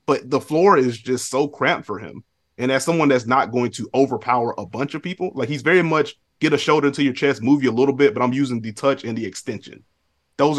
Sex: male